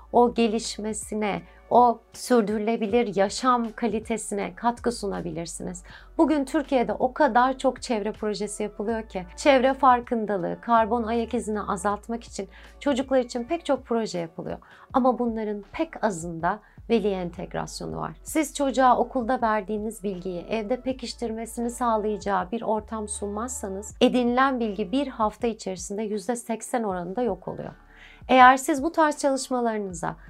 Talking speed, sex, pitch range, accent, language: 125 wpm, female, 205-250 Hz, native, Turkish